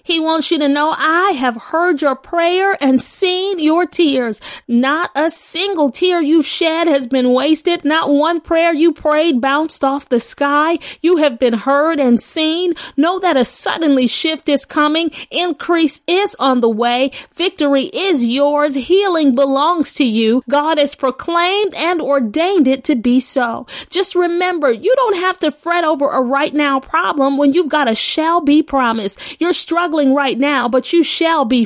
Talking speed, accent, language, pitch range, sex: 175 wpm, American, English, 270-335 Hz, female